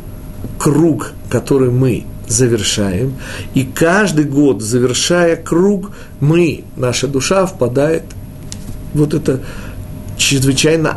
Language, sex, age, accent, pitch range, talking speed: Russian, male, 40-59, native, 105-145 Hz, 95 wpm